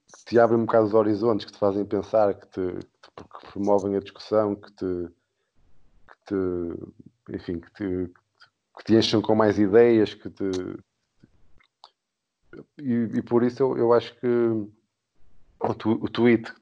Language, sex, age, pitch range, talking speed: Portuguese, male, 20-39, 95-110 Hz, 175 wpm